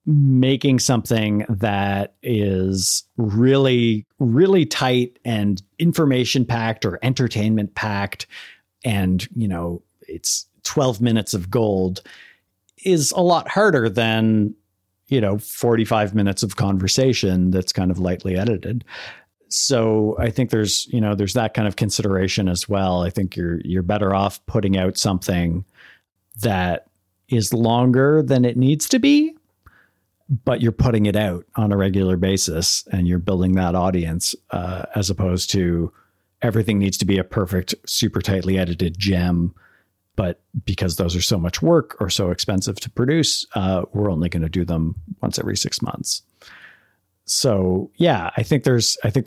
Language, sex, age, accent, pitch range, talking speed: English, male, 40-59, American, 95-120 Hz, 150 wpm